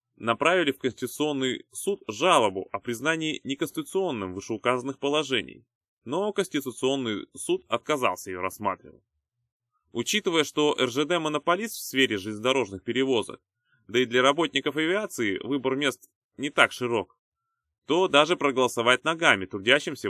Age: 20-39